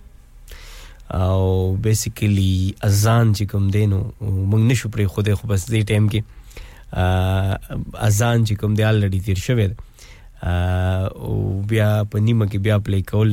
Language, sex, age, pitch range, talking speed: English, male, 20-39, 100-115 Hz, 95 wpm